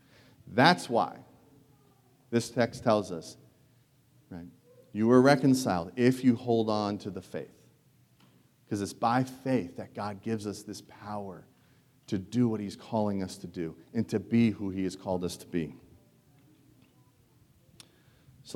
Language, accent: English, American